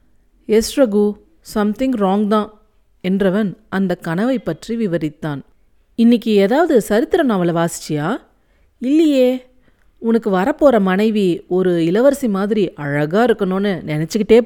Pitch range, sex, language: 180-255 Hz, female, Tamil